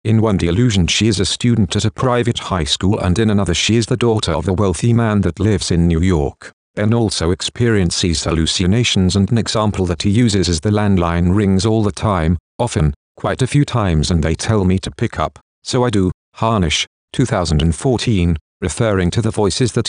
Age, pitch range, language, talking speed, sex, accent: 50-69, 85-115 Hz, English, 200 wpm, male, British